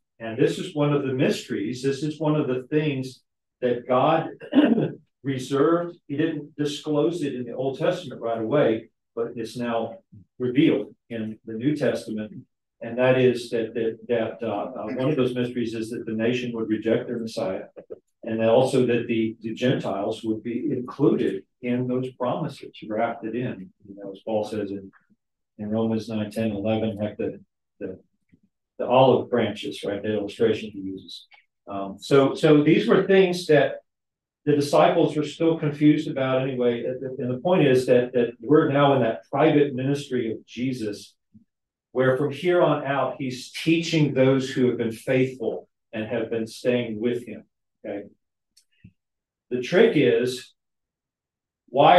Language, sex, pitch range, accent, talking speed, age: English, male, 110-145 Hz, American, 165 wpm, 40-59